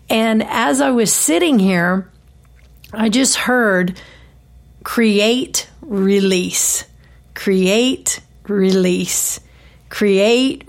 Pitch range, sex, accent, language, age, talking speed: 190-230 Hz, female, American, English, 50-69, 80 wpm